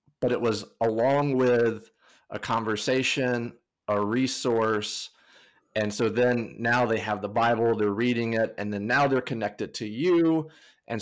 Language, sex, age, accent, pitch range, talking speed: English, male, 30-49, American, 105-130 Hz, 150 wpm